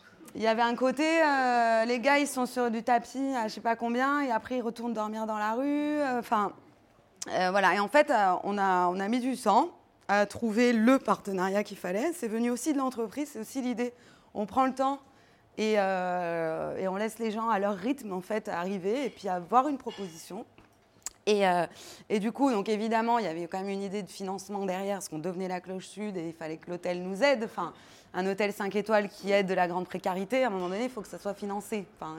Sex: female